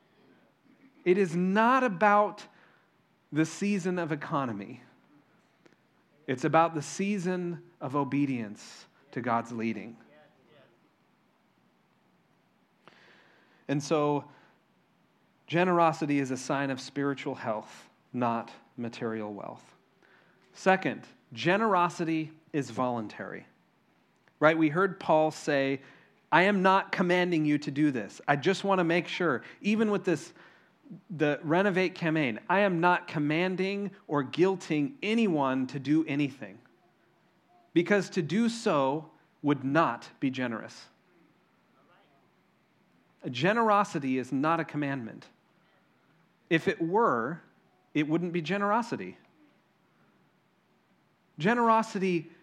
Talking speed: 100 wpm